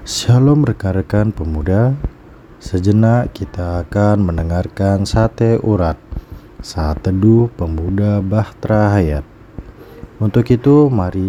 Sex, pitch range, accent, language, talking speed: male, 90-115 Hz, native, Indonesian, 90 wpm